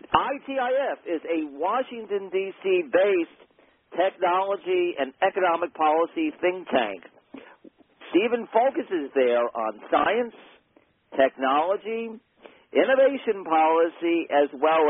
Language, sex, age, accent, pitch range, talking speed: English, male, 50-69, American, 160-250 Hz, 85 wpm